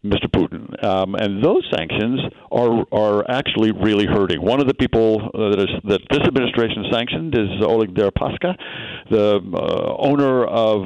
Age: 60-79